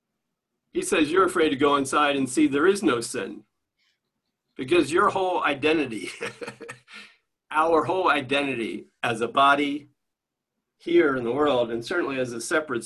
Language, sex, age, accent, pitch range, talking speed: English, male, 50-69, American, 130-185 Hz, 150 wpm